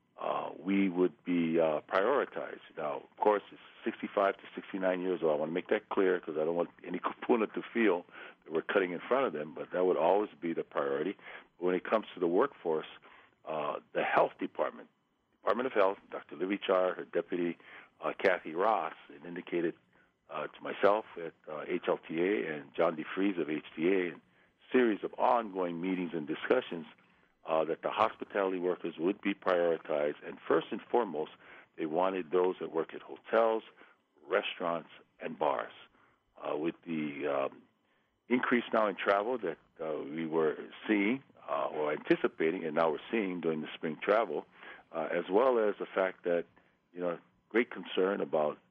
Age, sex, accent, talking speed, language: 50-69, male, American, 175 wpm, English